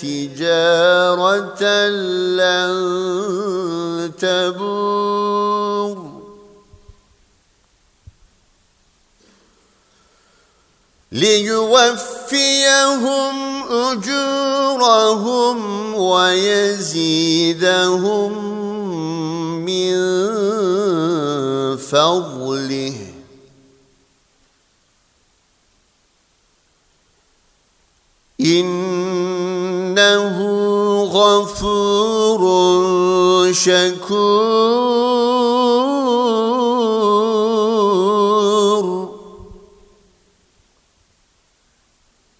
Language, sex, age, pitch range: Turkish, male, 50-69, 180-245 Hz